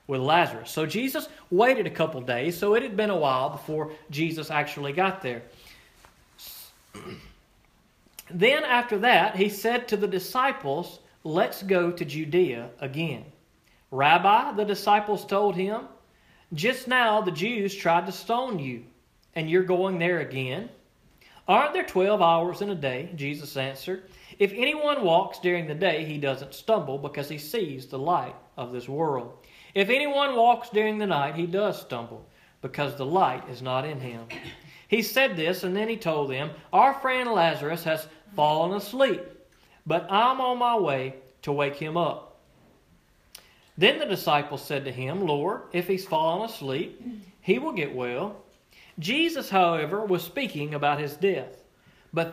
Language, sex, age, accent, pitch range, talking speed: English, male, 40-59, American, 145-205 Hz, 155 wpm